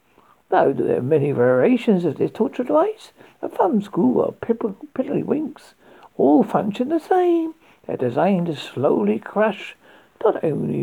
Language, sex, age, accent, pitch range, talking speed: English, male, 60-79, British, 205-290 Hz, 150 wpm